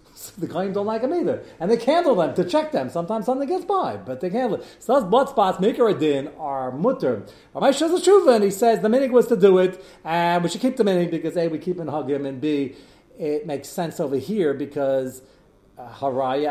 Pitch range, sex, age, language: 130-195 Hz, male, 40-59, English